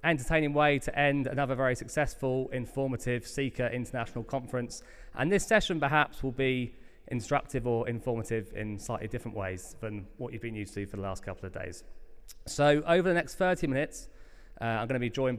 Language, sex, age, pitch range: English, male, 20-39, 115-140 Hz